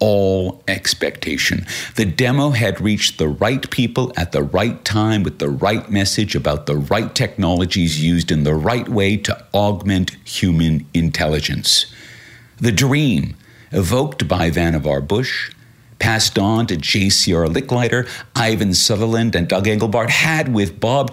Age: 50-69